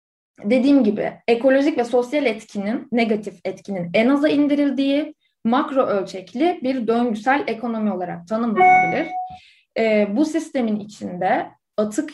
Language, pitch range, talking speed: Turkish, 210-275 Hz, 115 wpm